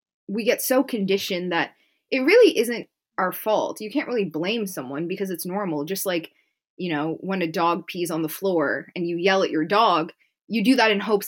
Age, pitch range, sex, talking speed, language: 20-39, 175-240 Hz, female, 215 wpm, English